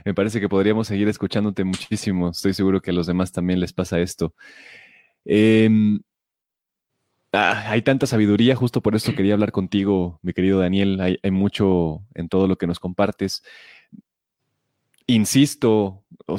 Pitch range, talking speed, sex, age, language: 90-105 Hz, 155 wpm, male, 20-39, Spanish